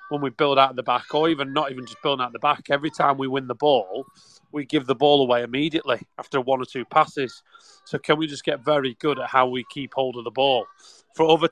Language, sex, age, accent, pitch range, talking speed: English, male, 30-49, British, 130-155 Hz, 260 wpm